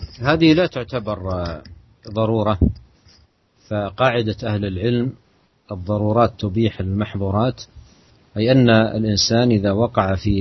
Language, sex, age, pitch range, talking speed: Malay, male, 40-59, 100-115 Hz, 90 wpm